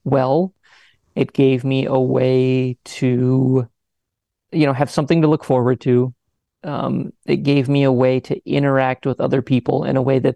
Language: English